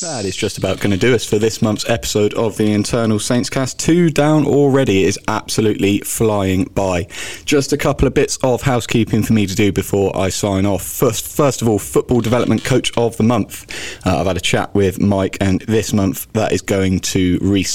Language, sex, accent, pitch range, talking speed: English, male, British, 90-125 Hz, 215 wpm